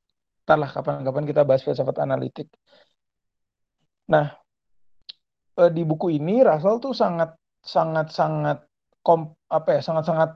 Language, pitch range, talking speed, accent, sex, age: Indonesian, 145-165 Hz, 80 wpm, native, male, 30-49